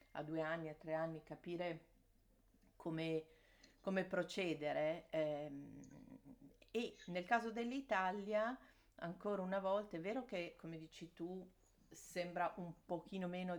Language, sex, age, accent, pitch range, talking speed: Italian, female, 40-59, native, 150-180 Hz, 125 wpm